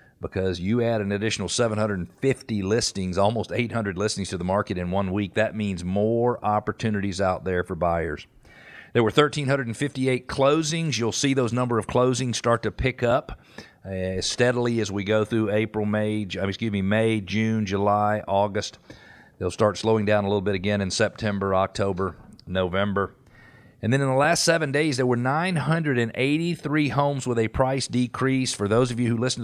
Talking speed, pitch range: 175 wpm, 100-125 Hz